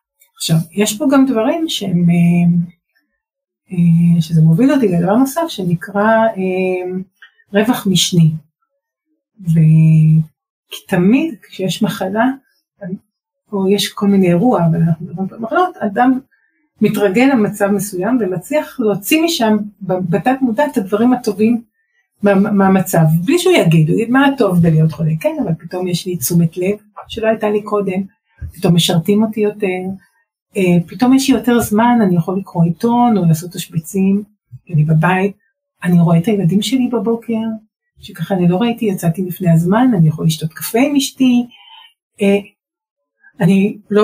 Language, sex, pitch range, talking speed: Hebrew, female, 180-240 Hz, 140 wpm